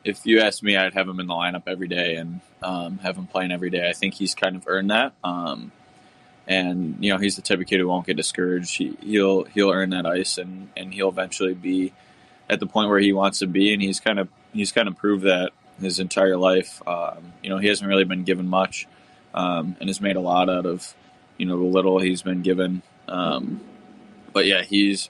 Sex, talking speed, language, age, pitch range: male, 235 wpm, English, 20-39, 90-95 Hz